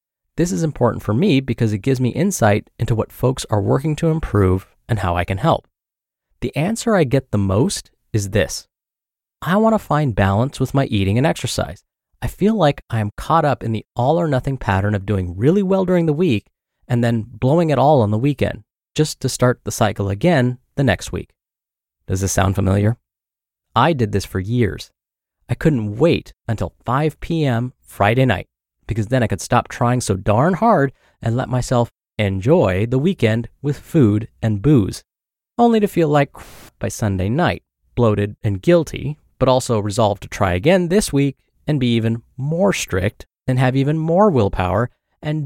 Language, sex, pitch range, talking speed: English, male, 105-150 Hz, 185 wpm